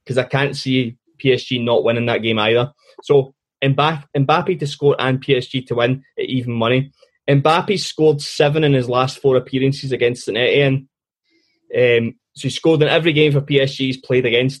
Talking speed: 175 wpm